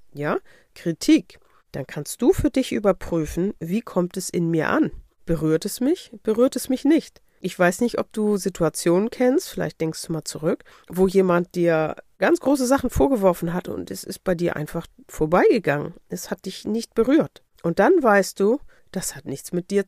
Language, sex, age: German, female, 40-59